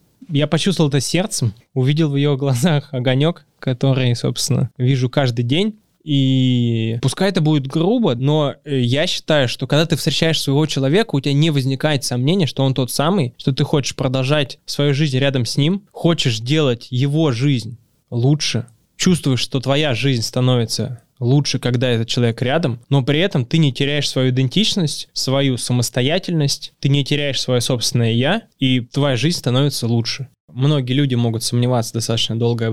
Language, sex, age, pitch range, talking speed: Russian, male, 20-39, 120-145 Hz, 160 wpm